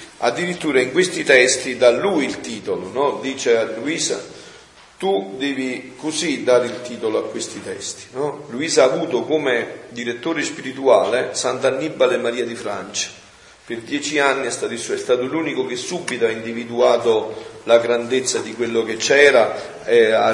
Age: 40-59